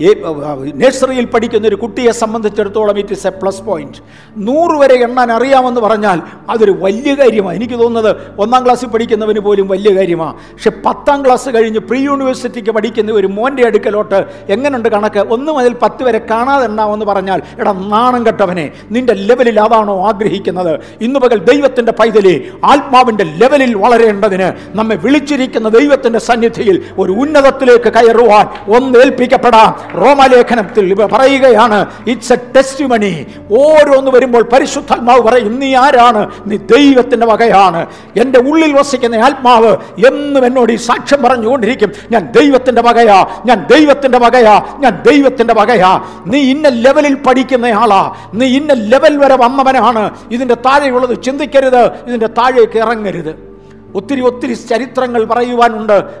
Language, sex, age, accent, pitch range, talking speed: Malayalam, male, 60-79, native, 215-260 Hz, 125 wpm